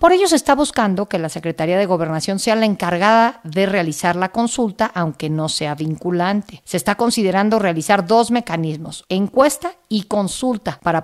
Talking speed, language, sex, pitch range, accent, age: 170 wpm, Spanish, female, 175-225 Hz, Mexican, 50-69